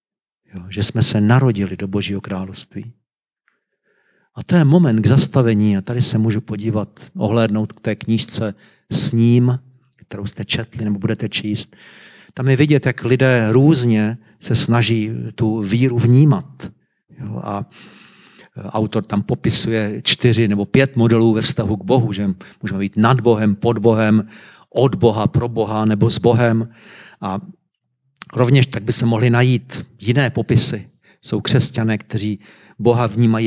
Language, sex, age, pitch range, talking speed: Czech, male, 40-59, 110-130 Hz, 145 wpm